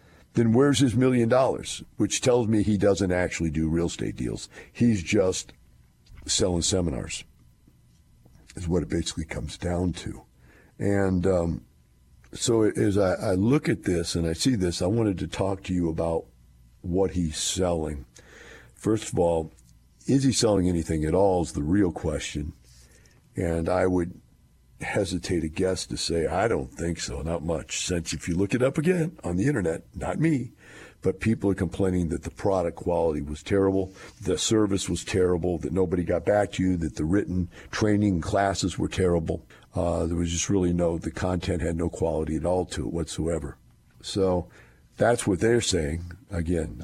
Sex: male